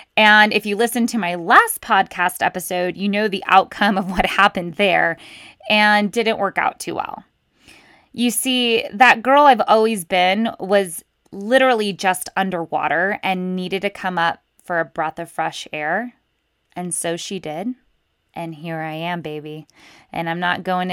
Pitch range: 175-215 Hz